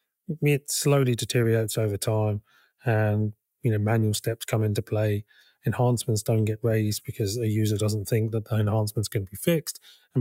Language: English